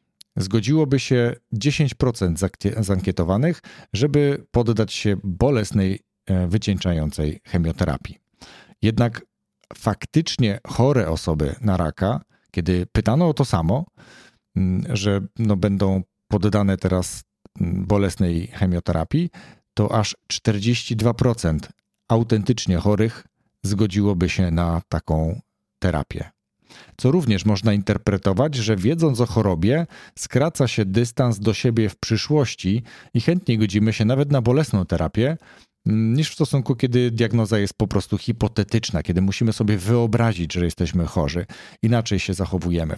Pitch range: 95-120 Hz